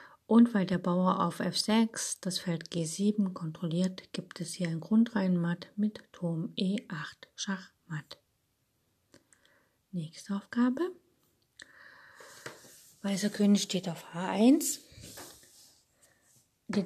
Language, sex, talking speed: German, female, 95 wpm